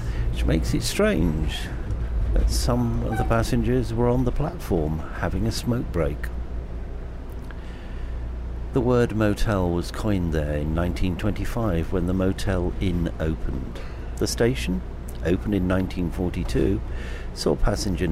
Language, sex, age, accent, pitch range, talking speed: English, male, 60-79, British, 70-95 Hz, 125 wpm